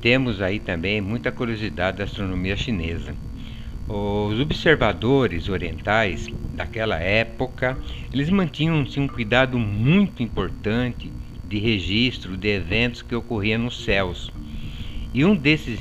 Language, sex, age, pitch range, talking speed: Portuguese, male, 60-79, 100-130 Hz, 115 wpm